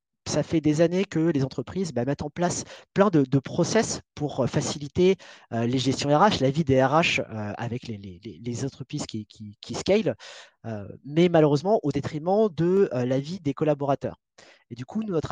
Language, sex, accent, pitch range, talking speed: French, male, French, 125-165 Hz, 200 wpm